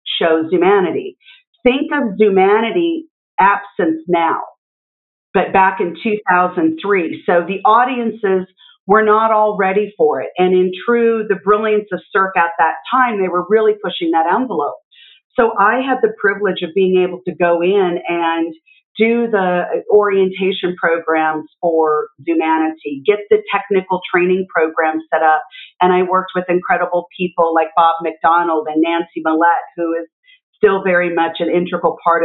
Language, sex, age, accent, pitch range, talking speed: English, female, 40-59, American, 170-215 Hz, 150 wpm